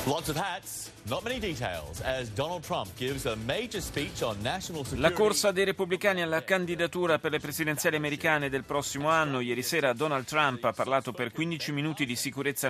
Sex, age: male, 30-49